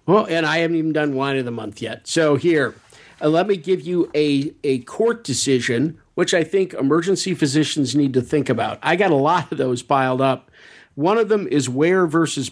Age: 50-69